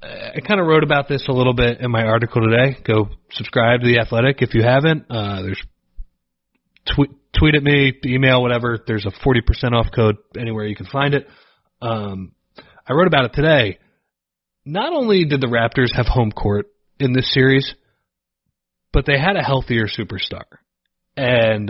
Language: English